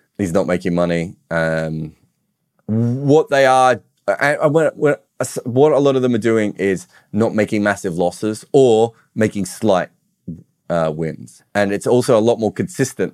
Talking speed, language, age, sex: 145 wpm, English, 30-49, male